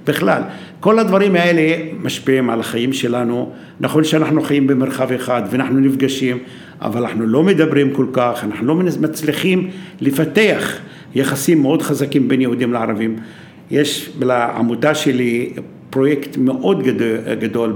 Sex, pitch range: male, 120-155 Hz